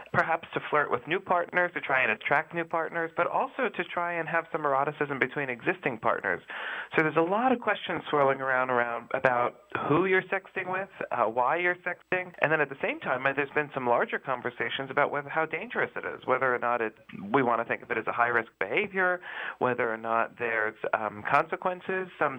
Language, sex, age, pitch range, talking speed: English, male, 40-59, 115-165 Hz, 210 wpm